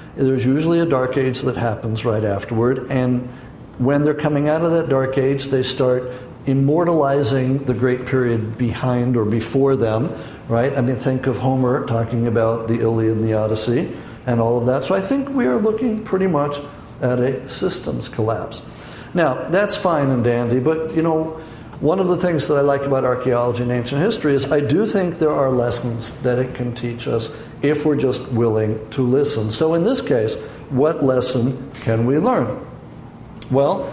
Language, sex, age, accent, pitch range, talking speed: English, male, 60-79, American, 120-150 Hz, 185 wpm